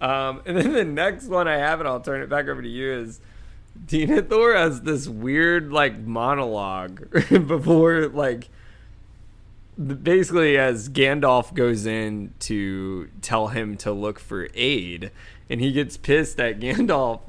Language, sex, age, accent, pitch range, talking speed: English, male, 20-39, American, 100-135 Hz, 150 wpm